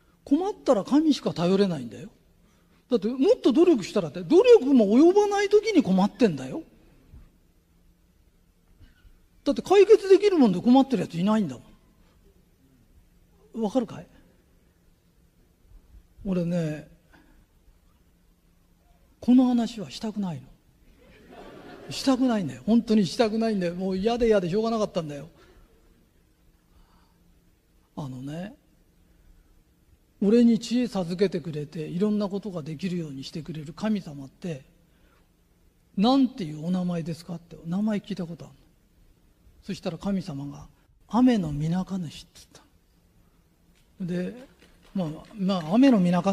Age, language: 40-59, Japanese